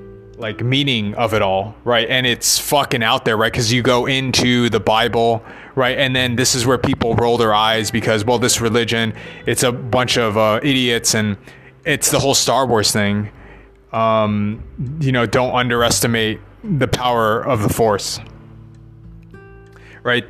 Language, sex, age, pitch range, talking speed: English, male, 20-39, 110-130 Hz, 165 wpm